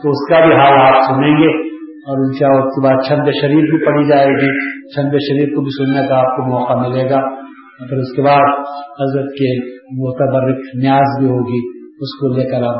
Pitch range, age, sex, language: 125-145 Hz, 50-69, male, Urdu